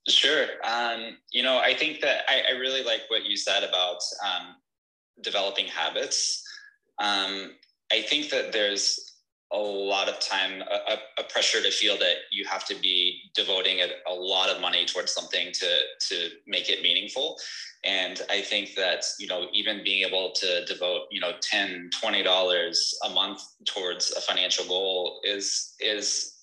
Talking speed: 165 wpm